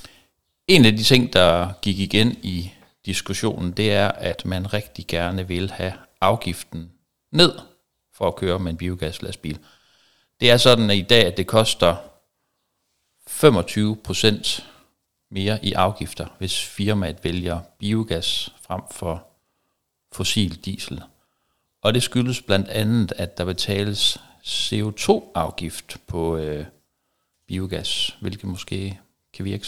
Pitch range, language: 90-105 Hz, Danish